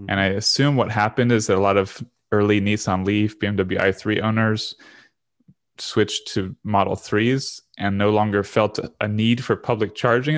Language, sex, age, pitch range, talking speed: English, male, 20-39, 95-115 Hz, 170 wpm